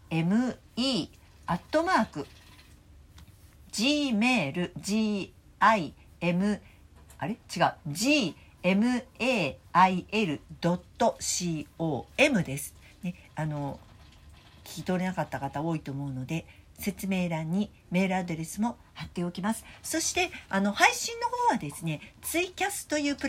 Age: 50-69